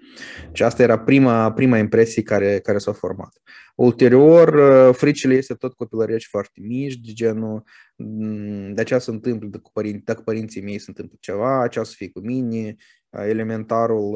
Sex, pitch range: male, 110-130 Hz